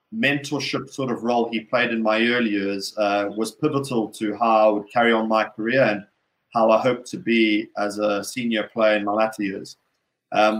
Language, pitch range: English, 105-120 Hz